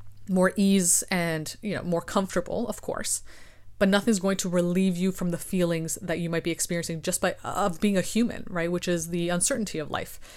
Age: 20-39